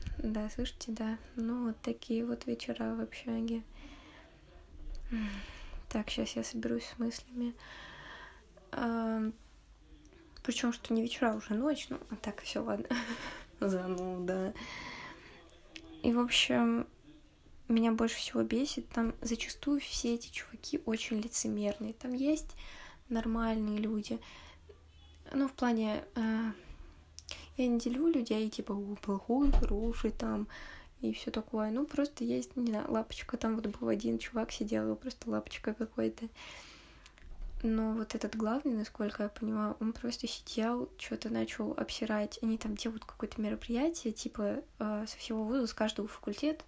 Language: Russian